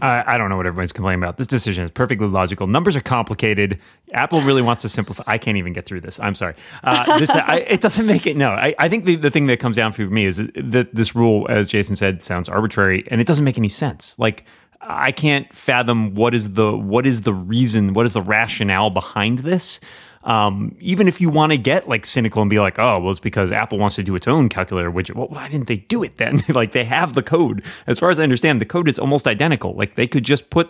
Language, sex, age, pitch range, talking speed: English, male, 30-49, 100-130 Hz, 255 wpm